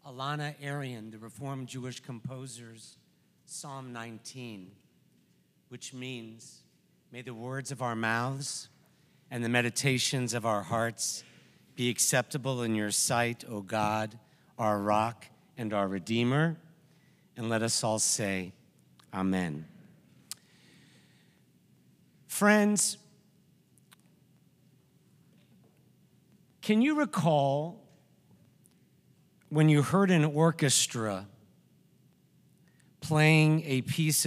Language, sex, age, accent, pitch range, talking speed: English, male, 50-69, American, 115-160 Hz, 90 wpm